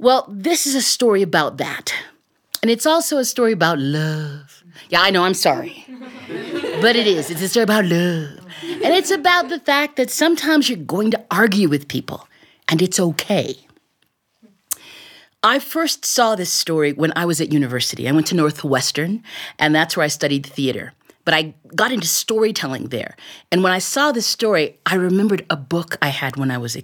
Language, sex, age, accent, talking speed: English, female, 40-59, American, 190 wpm